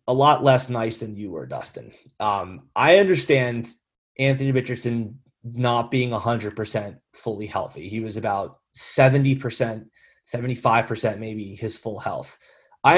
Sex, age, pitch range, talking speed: male, 30-49, 120-165 Hz, 130 wpm